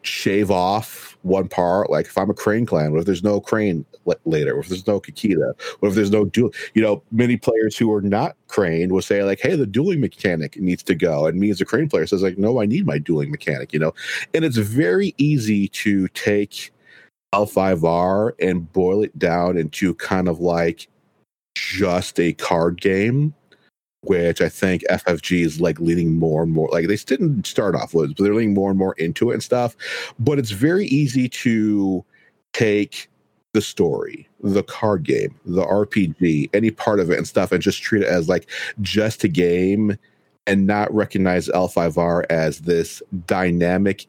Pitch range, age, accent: 90-110 Hz, 40-59, American